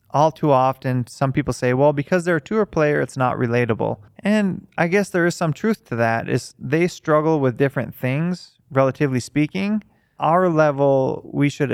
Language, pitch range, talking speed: English, 115-145 Hz, 185 wpm